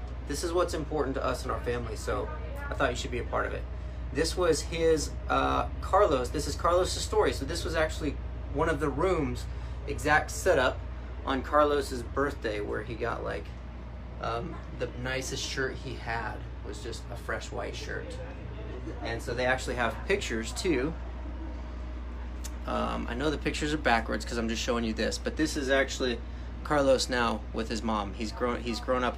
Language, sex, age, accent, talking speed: English, male, 30-49, American, 185 wpm